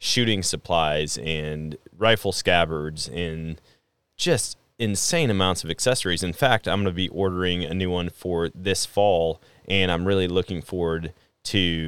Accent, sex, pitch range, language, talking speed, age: American, male, 85-105 Hz, English, 150 wpm, 20-39